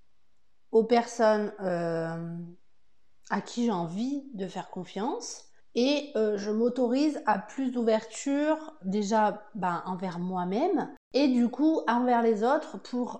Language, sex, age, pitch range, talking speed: French, female, 30-49, 195-240 Hz, 125 wpm